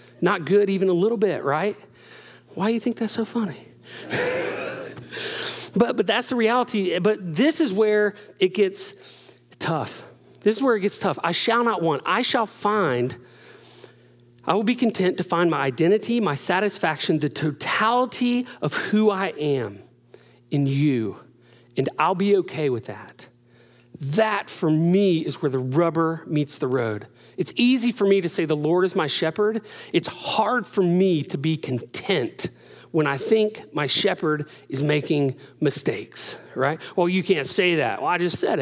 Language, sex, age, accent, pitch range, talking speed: English, male, 40-59, American, 150-220 Hz, 170 wpm